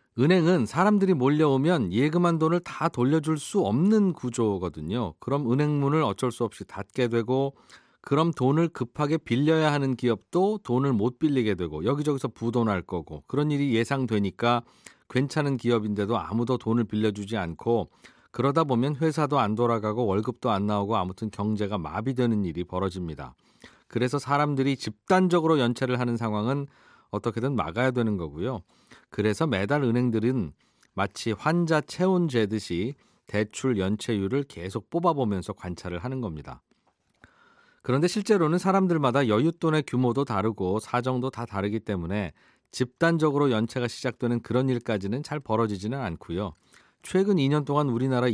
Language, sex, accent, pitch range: Korean, male, native, 105-145 Hz